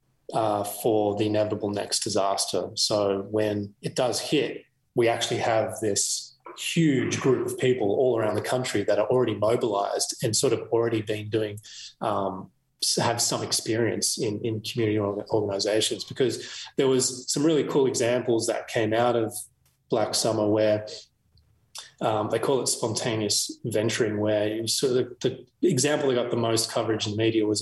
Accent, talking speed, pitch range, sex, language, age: Australian, 165 wpm, 105-120 Hz, male, English, 20-39